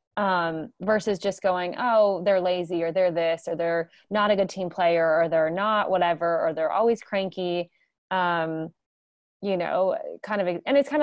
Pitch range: 170-225 Hz